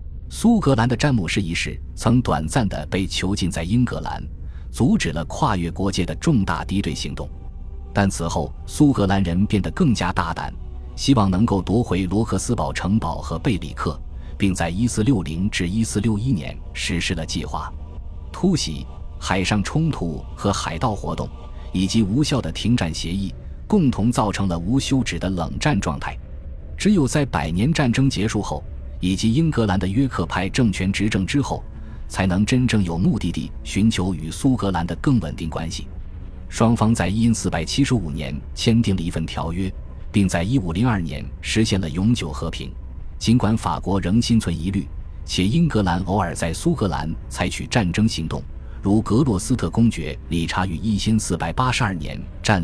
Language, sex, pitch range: Chinese, male, 80-110 Hz